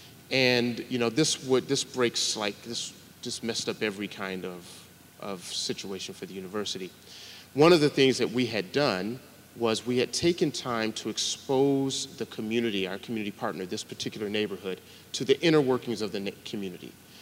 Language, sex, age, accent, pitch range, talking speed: English, male, 30-49, American, 110-135 Hz, 175 wpm